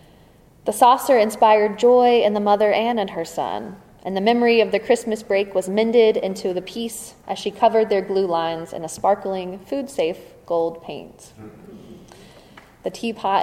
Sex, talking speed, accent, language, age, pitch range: female, 165 wpm, American, English, 20-39, 180-215 Hz